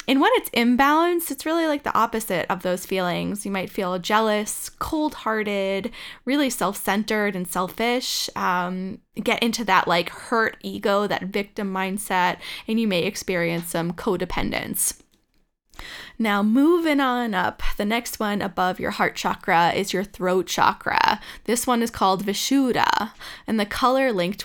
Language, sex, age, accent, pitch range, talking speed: English, female, 10-29, American, 190-245 Hz, 150 wpm